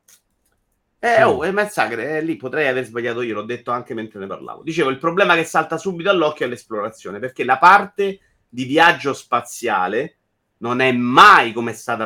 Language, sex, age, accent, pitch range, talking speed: Italian, male, 30-49, native, 110-150 Hz, 180 wpm